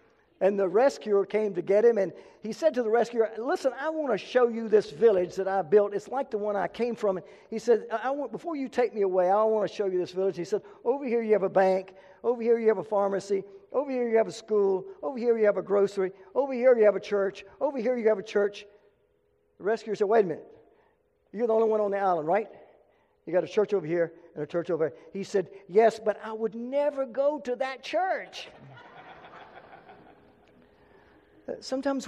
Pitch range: 190-245 Hz